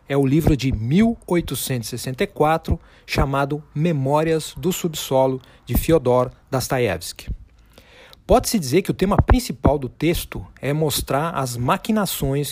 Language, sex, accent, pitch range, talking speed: Portuguese, male, Brazilian, 130-180 Hz, 115 wpm